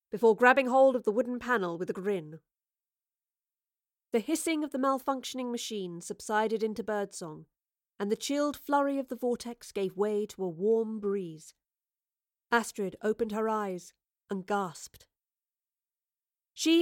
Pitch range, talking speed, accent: 200-250 Hz, 140 wpm, British